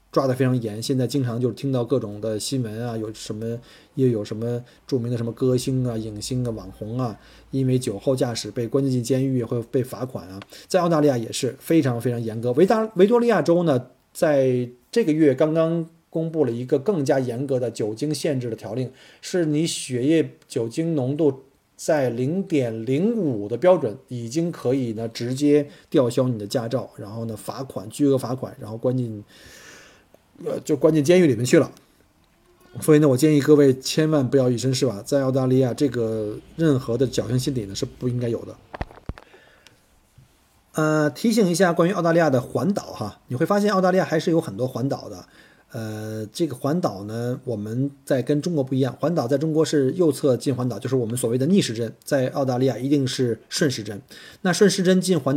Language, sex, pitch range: Chinese, male, 120-150 Hz